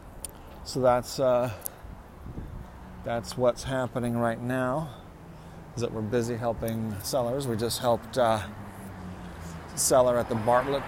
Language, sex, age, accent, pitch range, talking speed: English, male, 40-59, American, 100-125 Hz, 125 wpm